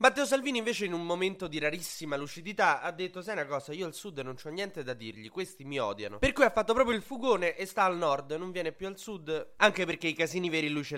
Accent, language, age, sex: native, Italian, 20-39, male